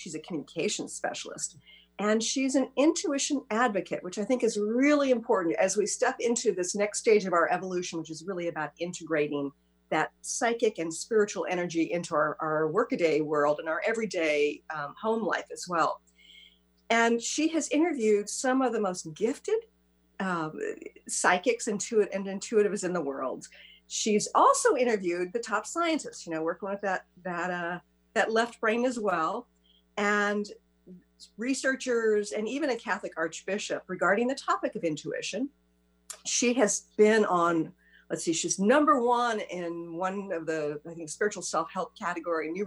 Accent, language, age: American, English, 50-69